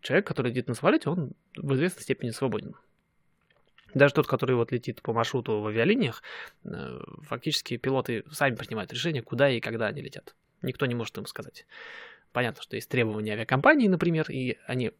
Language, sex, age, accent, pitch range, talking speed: Russian, male, 20-39, native, 120-180 Hz, 170 wpm